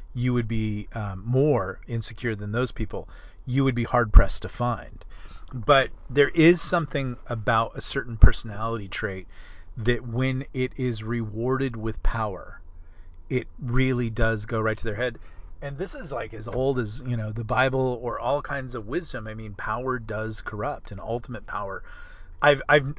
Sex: male